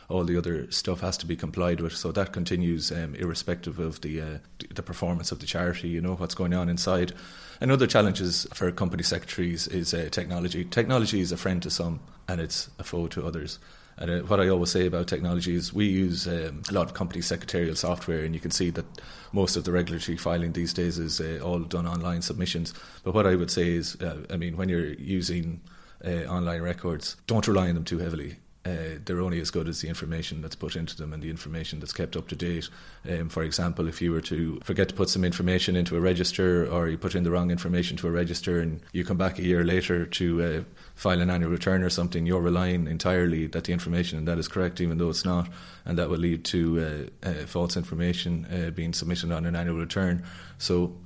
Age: 30-49